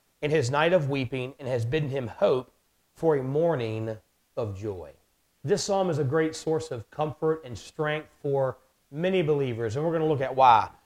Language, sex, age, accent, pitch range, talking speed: English, male, 40-59, American, 130-175 Hz, 195 wpm